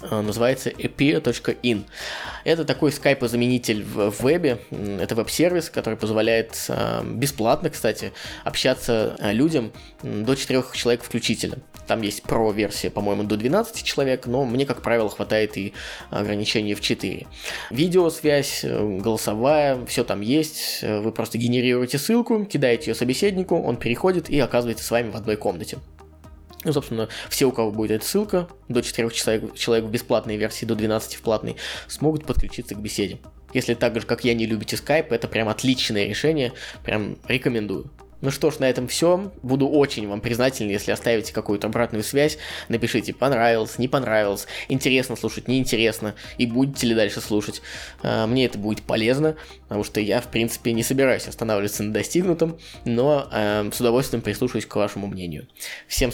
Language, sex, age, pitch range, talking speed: Russian, male, 20-39, 105-135 Hz, 150 wpm